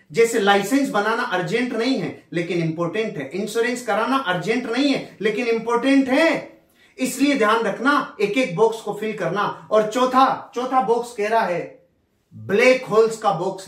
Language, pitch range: Hindi, 180-245 Hz